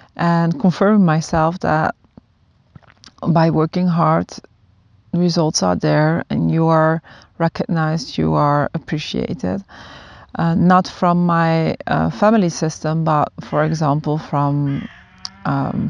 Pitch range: 145-185 Hz